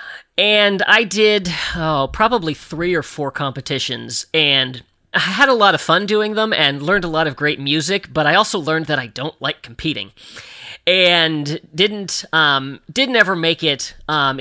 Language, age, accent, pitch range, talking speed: English, 40-59, American, 135-175 Hz, 175 wpm